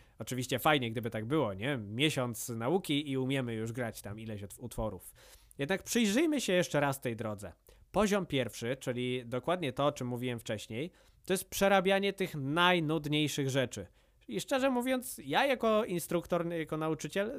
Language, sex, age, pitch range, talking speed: Polish, male, 20-39, 120-165 Hz, 155 wpm